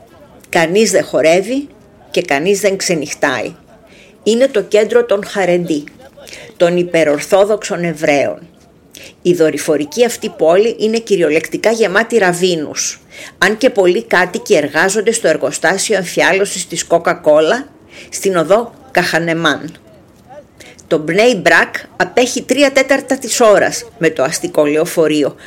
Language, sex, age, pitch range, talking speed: Greek, female, 50-69, 160-230 Hz, 115 wpm